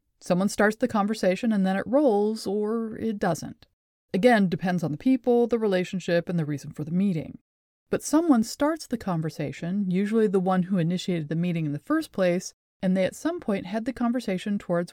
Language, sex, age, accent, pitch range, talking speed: English, female, 30-49, American, 175-225 Hz, 195 wpm